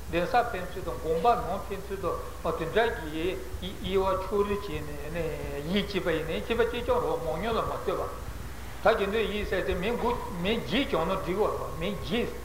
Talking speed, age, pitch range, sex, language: 55 wpm, 60-79, 165-230 Hz, male, Italian